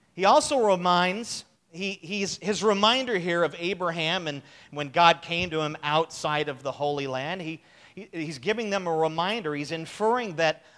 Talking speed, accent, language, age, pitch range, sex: 175 wpm, American, English, 40-59, 160-235 Hz, male